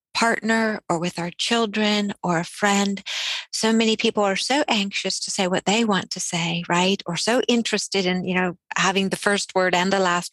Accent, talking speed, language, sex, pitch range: American, 205 wpm, English, female, 180-220 Hz